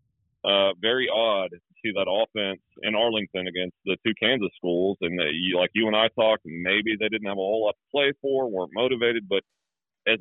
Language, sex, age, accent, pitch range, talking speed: English, male, 40-59, American, 100-125 Hz, 200 wpm